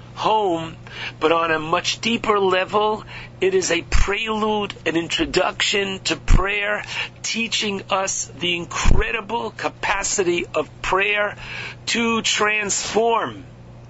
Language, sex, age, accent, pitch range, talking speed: English, male, 50-69, American, 175-220 Hz, 105 wpm